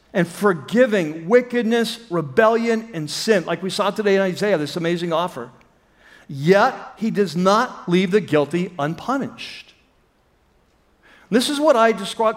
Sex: male